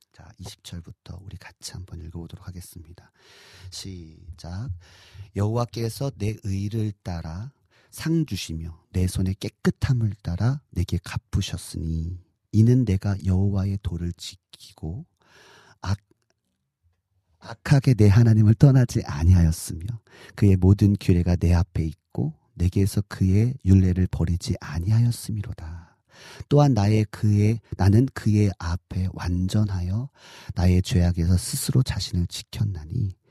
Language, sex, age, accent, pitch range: Korean, male, 40-59, native, 90-120 Hz